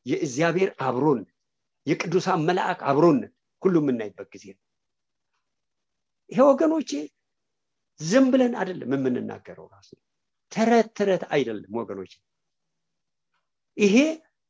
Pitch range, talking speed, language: 190-235 Hz, 60 wpm, English